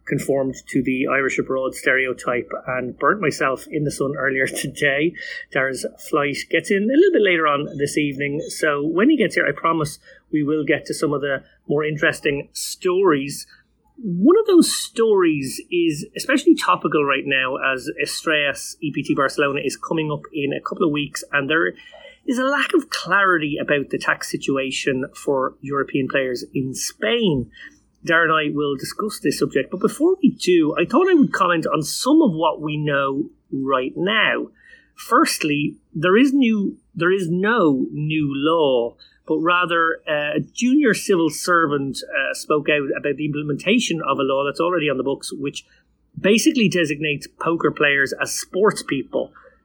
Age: 30-49